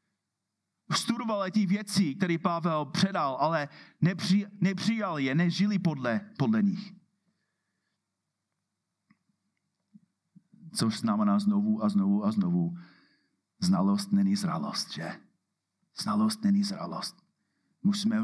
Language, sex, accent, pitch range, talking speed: Czech, male, native, 180-210 Hz, 95 wpm